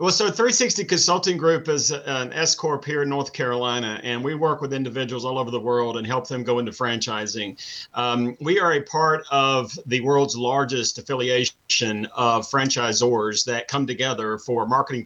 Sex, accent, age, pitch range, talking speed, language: male, American, 40-59, 125-155 Hz, 175 wpm, English